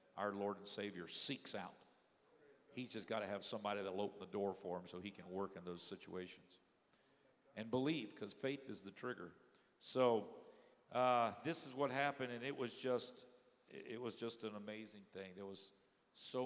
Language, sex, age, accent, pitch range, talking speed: English, male, 50-69, American, 95-115 Hz, 185 wpm